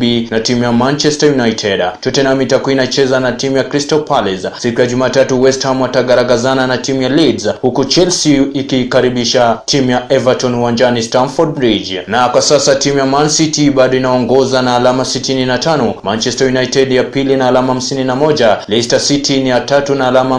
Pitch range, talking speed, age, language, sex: 125-140 Hz, 175 wpm, 20-39, Swahili, male